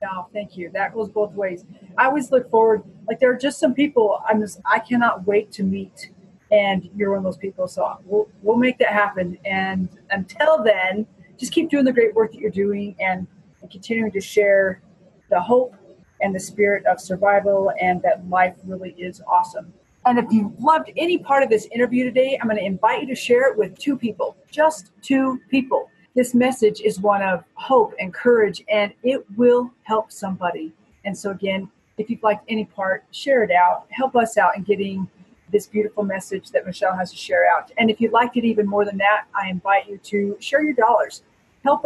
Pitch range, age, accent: 190-235 Hz, 40-59, American